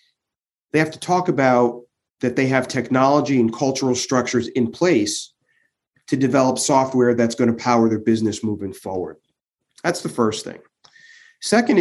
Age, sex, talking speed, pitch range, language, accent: 30-49, male, 150 wpm, 120-145 Hz, English, American